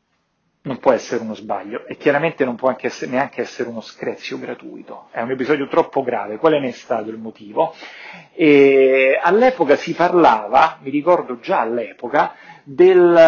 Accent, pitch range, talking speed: native, 125-175 Hz, 145 wpm